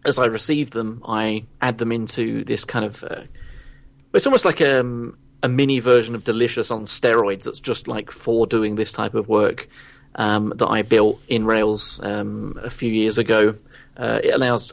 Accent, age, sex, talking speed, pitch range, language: British, 30-49, male, 185 wpm, 110-125 Hz, English